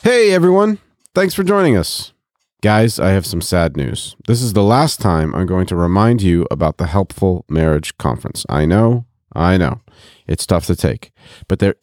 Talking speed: 190 wpm